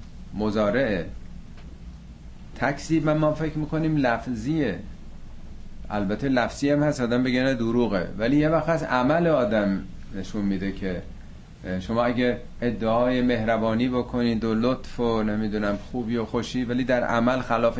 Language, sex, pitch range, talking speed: Persian, male, 105-145 Hz, 130 wpm